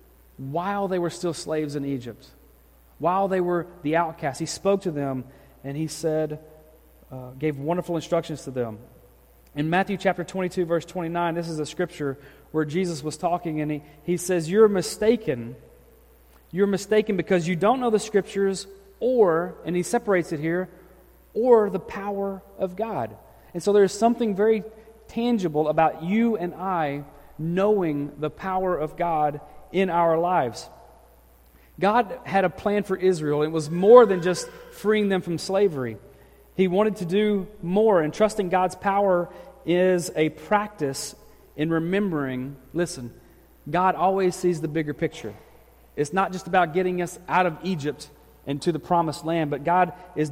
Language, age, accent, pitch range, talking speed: English, 30-49, American, 155-190 Hz, 160 wpm